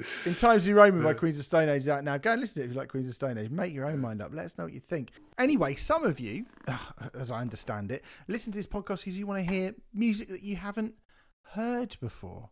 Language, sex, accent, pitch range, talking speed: English, male, British, 125-175 Hz, 280 wpm